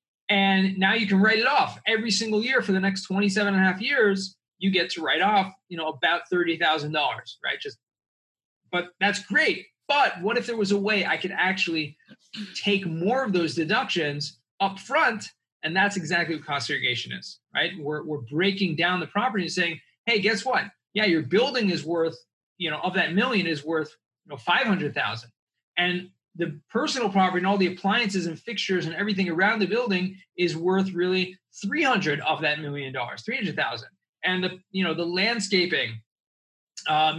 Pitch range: 165-200 Hz